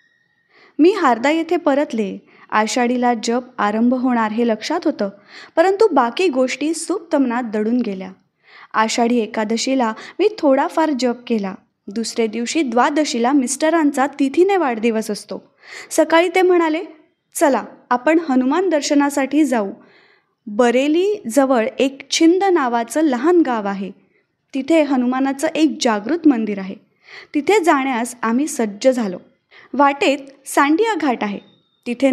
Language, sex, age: Marathi, female, 20-39